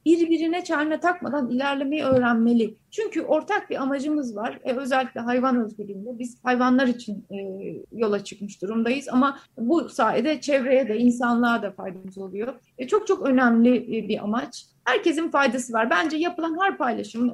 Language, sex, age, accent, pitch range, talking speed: Turkish, female, 30-49, native, 230-285 Hz, 150 wpm